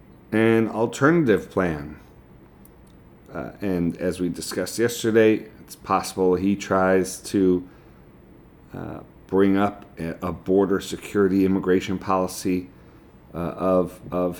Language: English